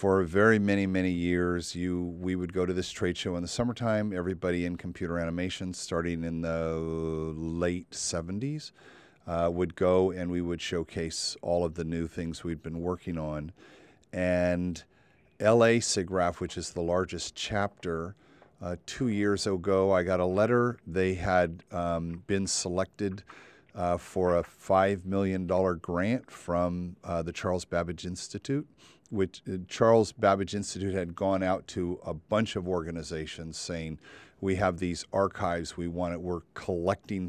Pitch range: 85-95 Hz